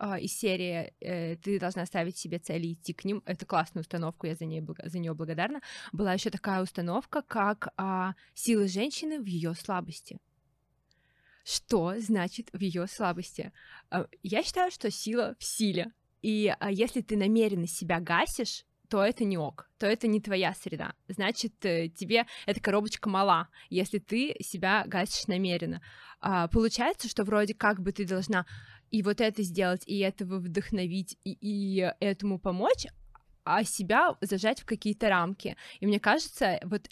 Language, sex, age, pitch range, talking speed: Russian, female, 20-39, 180-220 Hz, 160 wpm